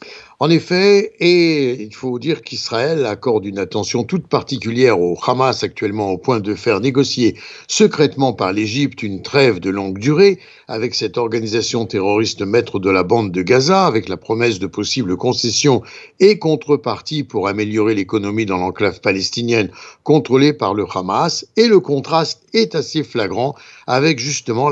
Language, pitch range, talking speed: French, 110-155 Hz, 155 wpm